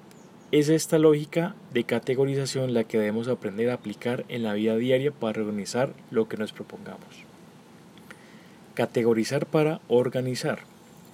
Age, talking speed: 20-39, 130 wpm